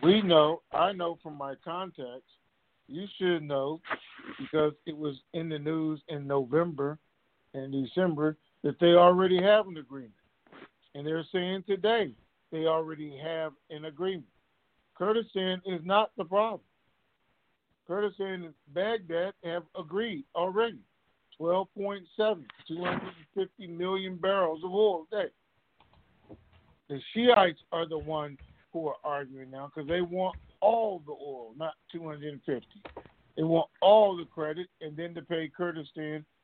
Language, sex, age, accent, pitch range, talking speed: English, male, 50-69, American, 155-195 Hz, 130 wpm